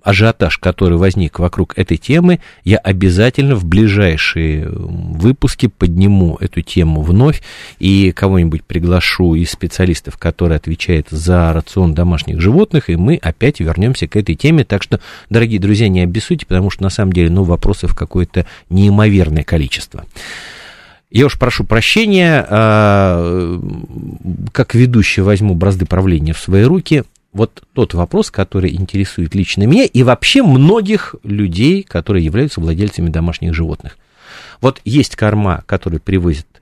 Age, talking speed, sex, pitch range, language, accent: 40-59, 135 wpm, male, 85-120 Hz, Russian, native